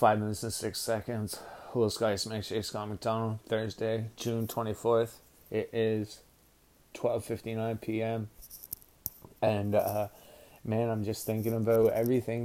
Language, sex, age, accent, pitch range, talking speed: English, male, 20-39, American, 105-115 Hz, 125 wpm